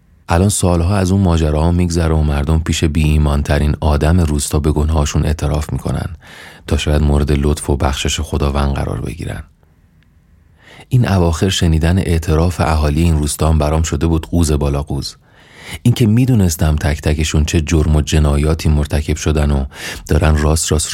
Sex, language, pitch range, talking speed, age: male, Persian, 75-85 Hz, 160 wpm, 30-49